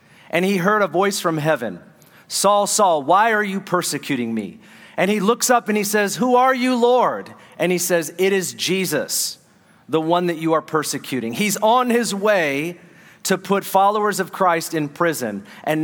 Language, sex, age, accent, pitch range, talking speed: English, male, 40-59, American, 155-210 Hz, 185 wpm